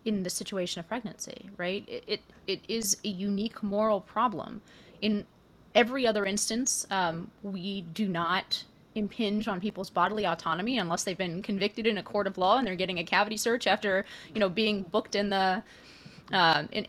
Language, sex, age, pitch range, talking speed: English, female, 20-39, 180-220 Hz, 180 wpm